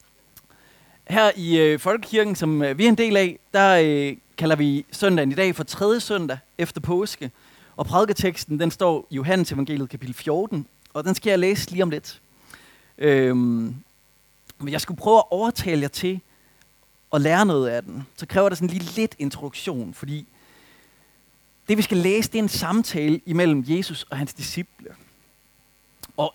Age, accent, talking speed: 30-49, native, 165 wpm